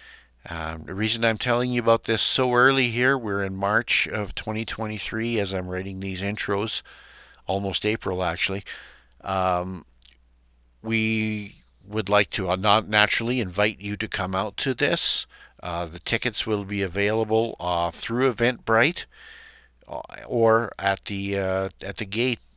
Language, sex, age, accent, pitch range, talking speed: English, male, 50-69, American, 95-120 Hz, 145 wpm